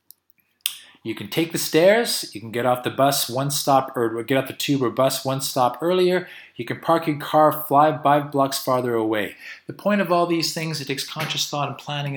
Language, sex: English, male